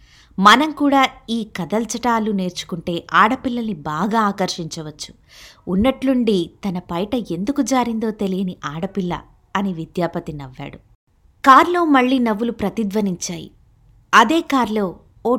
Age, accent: 20-39, native